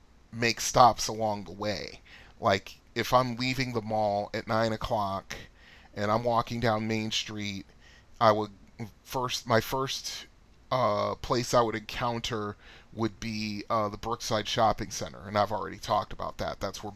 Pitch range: 100-110 Hz